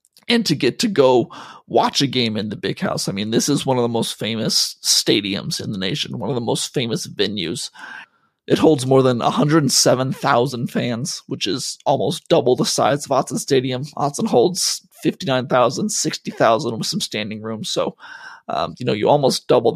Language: English